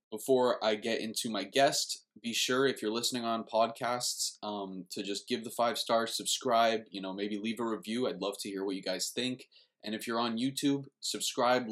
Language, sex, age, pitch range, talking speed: English, male, 20-39, 105-125 Hz, 210 wpm